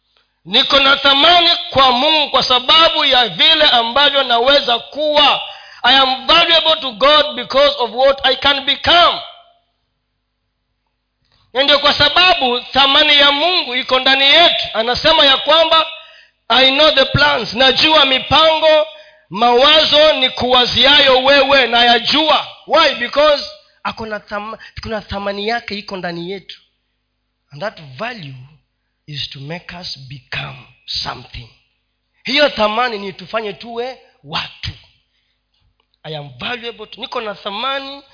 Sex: male